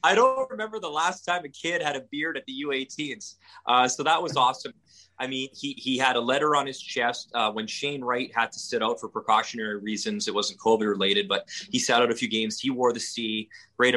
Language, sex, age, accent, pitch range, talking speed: English, male, 30-49, American, 105-125 Hz, 235 wpm